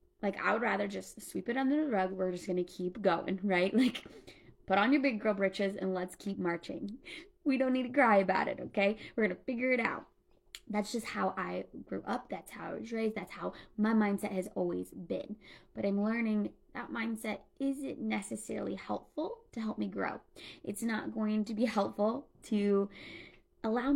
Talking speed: 200 wpm